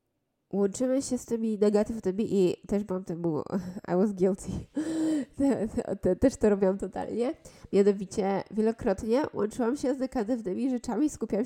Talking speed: 125 wpm